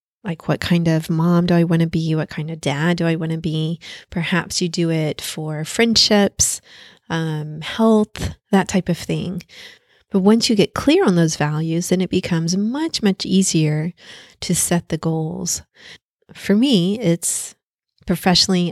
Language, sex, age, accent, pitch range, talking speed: English, female, 30-49, American, 160-190 Hz, 170 wpm